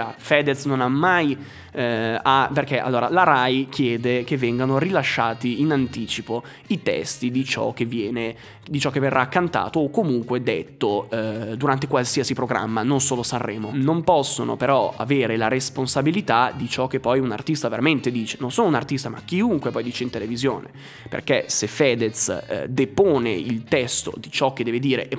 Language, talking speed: Italian, 175 wpm